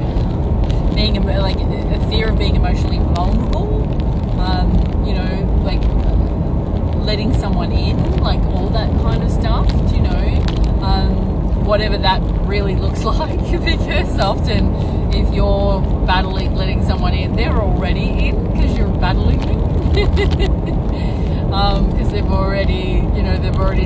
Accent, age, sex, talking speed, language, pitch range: Australian, 20-39, female, 130 wpm, English, 80-90 Hz